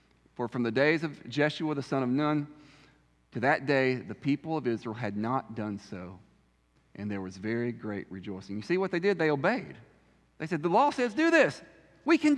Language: English